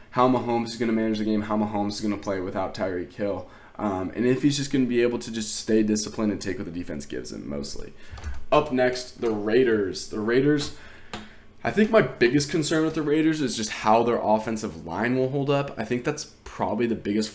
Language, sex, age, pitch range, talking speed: English, male, 20-39, 105-115 Hz, 230 wpm